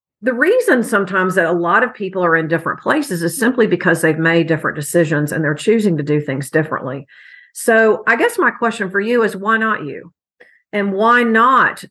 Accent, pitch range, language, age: American, 160-200 Hz, English, 50-69